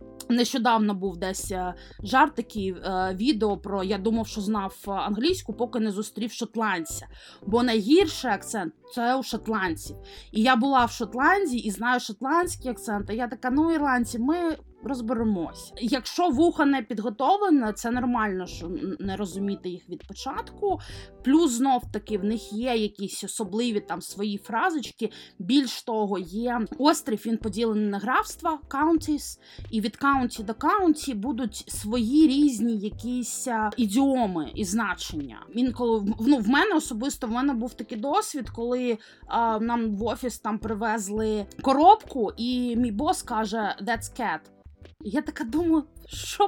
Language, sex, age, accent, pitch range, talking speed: Ukrainian, female, 20-39, native, 220-295 Hz, 140 wpm